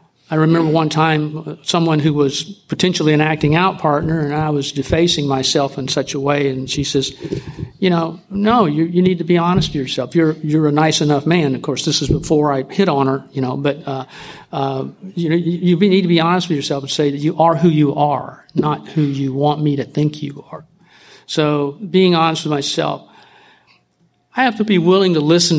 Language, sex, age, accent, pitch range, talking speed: English, male, 50-69, American, 145-170 Hz, 215 wpm